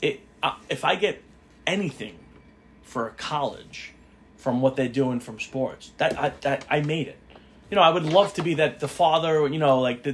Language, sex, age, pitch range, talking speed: English, male, 20-39, 135-180 Hz, 205 wpm